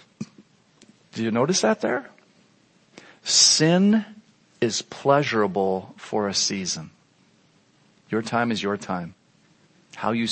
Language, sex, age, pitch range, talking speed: English, male, 40-59, 115-165 Hz, 105 wpm